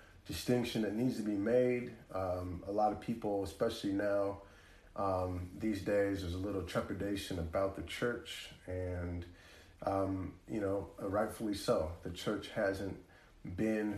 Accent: American